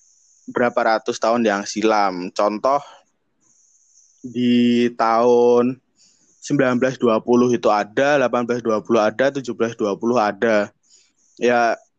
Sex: male